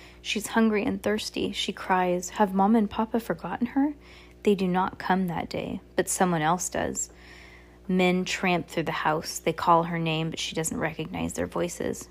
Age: 20-39